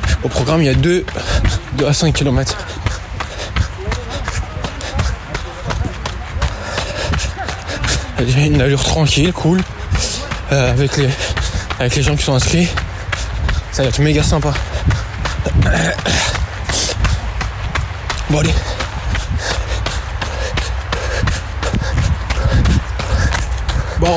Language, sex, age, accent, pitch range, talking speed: French, male, 20-39, French, 95-150 Hz, 80 wpm